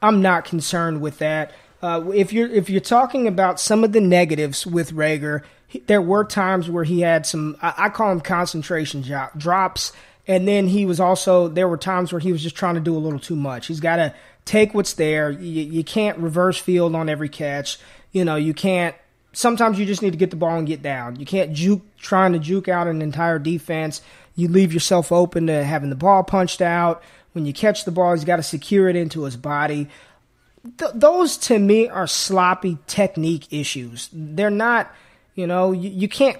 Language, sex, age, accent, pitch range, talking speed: English, male, 20-39, American, 160-200 Hz, 210 wpm